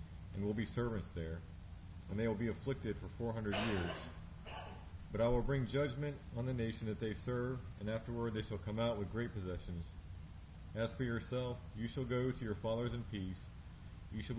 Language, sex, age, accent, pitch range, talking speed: English, male, 40-59, American, 90-115 Hz, 195 wpm